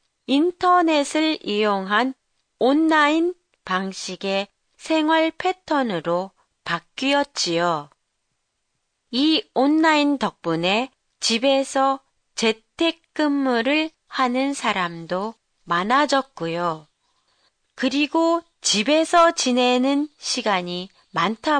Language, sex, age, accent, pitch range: Japanese, female, 30-49, Korean, 200-315 Hz